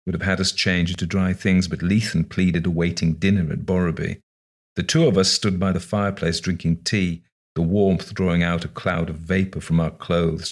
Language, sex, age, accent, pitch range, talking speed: English, male, 40-59, British, 80-100 Hz, 205 wpm